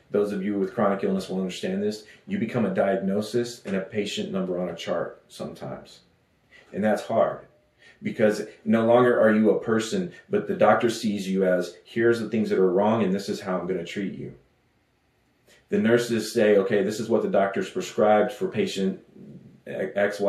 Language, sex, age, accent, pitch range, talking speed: English, male, 30-49, American, 95-120 Hz, 190 wpm